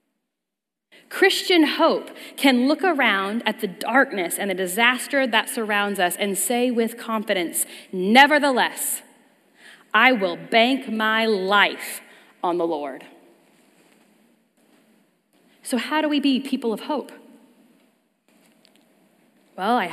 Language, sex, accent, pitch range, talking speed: English, female, American, 180-255 Hz, 110 wpm